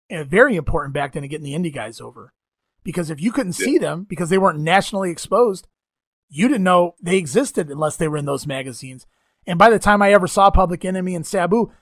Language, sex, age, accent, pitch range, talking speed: English, male, 30-49, American, 160-195 Hz, 225 wpm